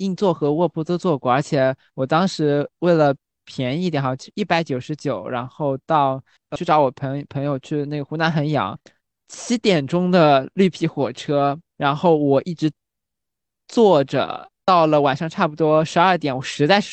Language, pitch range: Chinese, 140-175 Hz